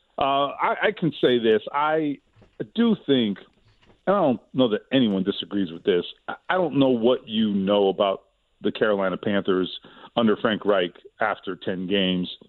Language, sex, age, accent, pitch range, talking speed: English, male, 40-59, American, 105-145 Hz, 170 wpm